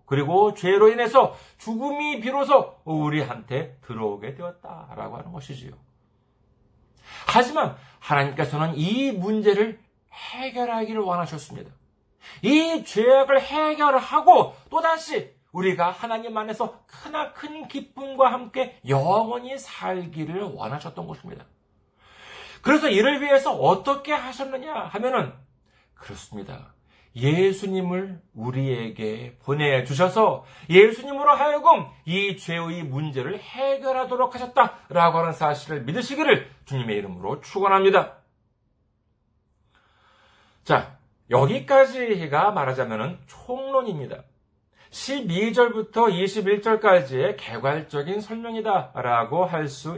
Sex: male